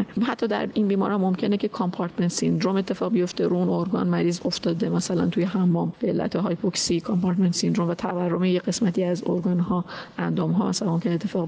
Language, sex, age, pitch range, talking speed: Persian, female, 30-49, 175-215 Hz, 180 wpm